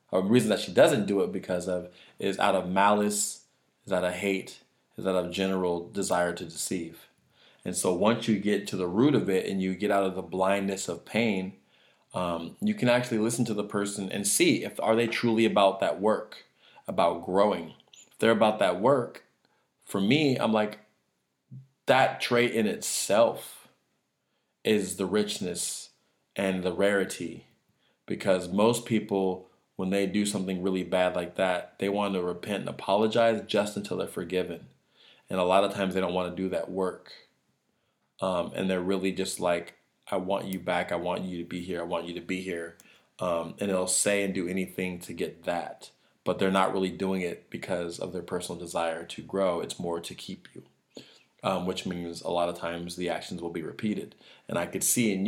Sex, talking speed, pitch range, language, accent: male, 195 wpm, 90-105 Hz, English, American